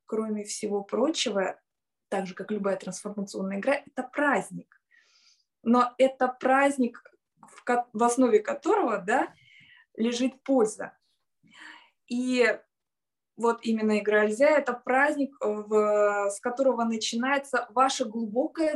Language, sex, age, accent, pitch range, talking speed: Russian, female, 20-39, native, 215-270 Hz, 95 wpm